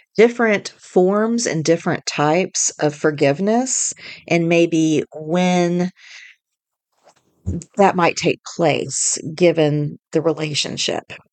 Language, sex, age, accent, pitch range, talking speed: English, female, 40-59, American, 145-185 Hz, 90 wpm